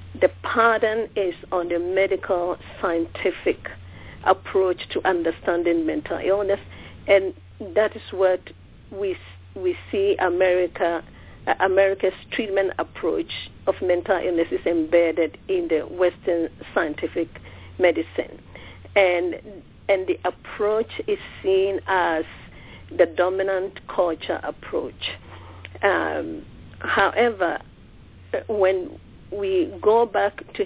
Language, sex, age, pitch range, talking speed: English, female, 50-69, 165-210 Hz, 100 wpm